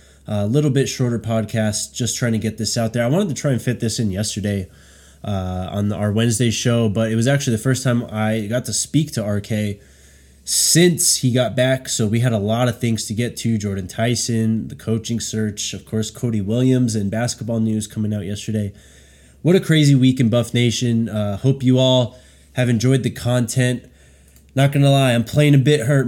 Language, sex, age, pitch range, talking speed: English, male, 20-39, 105-125 Hz, 210 wpm